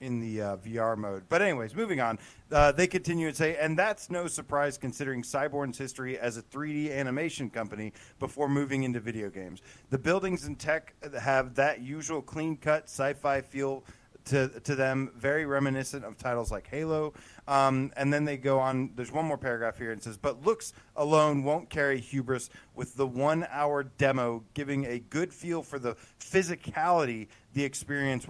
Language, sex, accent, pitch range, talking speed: English, male, American, 120-145 Hz, 175 wpm